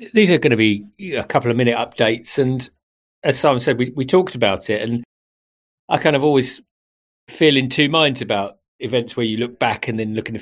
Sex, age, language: male, 40-59, English